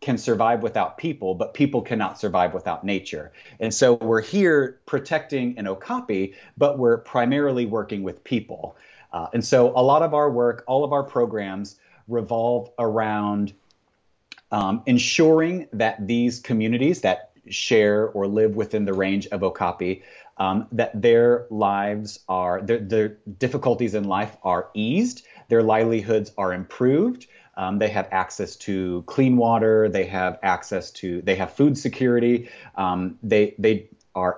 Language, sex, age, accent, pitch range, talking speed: English, male, 30-49, American, 100-120 Hz, 150 wpm